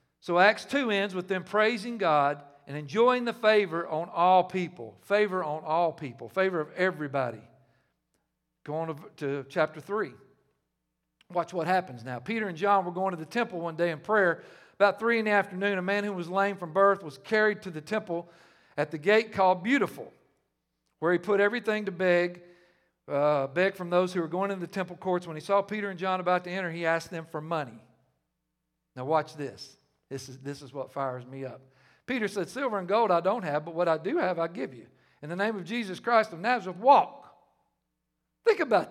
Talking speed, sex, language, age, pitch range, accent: 205 wpm, male, English, 50-69, 165-215 Hz, American